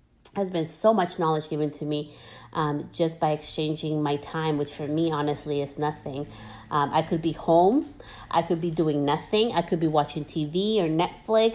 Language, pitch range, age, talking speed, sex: English, 155-195 Hz, 30-49, 190 wpm, female